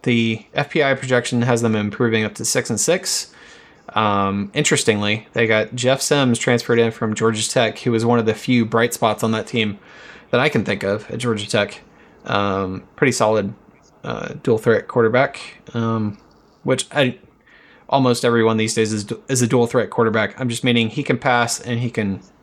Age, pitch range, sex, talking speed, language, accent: 20-39, 110-130 Hz, male, 185 wpm, English, American